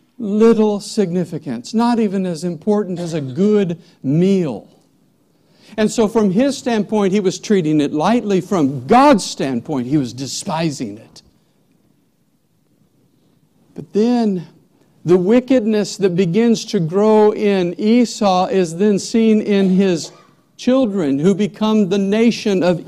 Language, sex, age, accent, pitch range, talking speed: English, male, 60-79, American, 160-215 Hz, 125 wpm